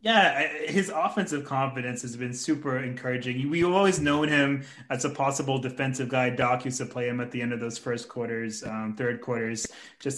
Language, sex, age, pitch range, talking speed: English, male, 20-39, 130-160 Hz, 195 wpm